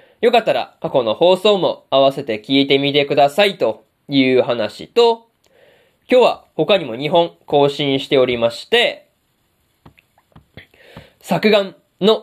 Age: 20-39